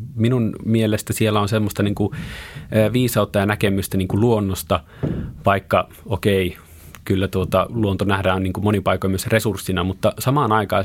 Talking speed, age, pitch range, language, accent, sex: 125 wpm, 30-49, 90-105 Hz, Finnish, native, male